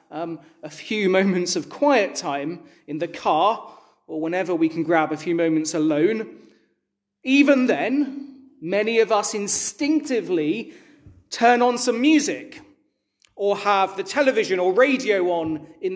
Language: English